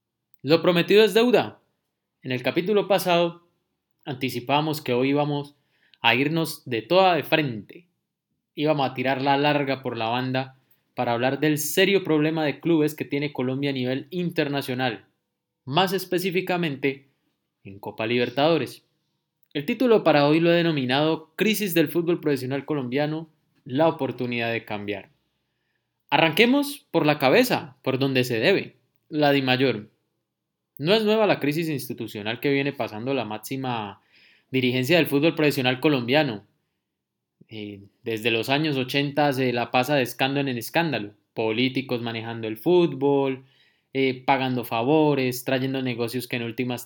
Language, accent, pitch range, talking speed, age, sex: Spanish, Colombian, 125-155 Hz, 145 wpm, 20-39, male